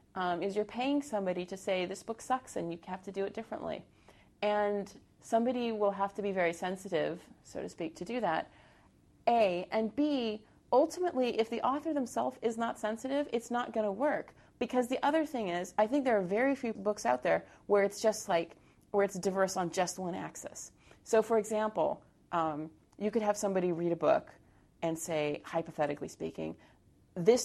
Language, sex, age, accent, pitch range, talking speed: English, female, 30-49, American, 160-220 Hz, 190 wpm